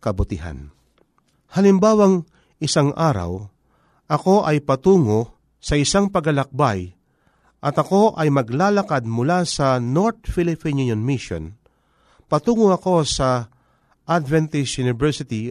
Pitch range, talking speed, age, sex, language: 115-175 Hz, 95 wpm, 40-59, male, Filipino